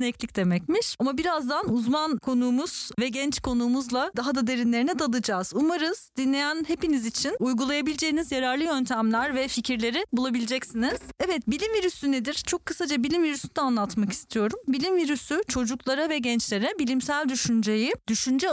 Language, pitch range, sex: Turkish, 235-300 Hz, female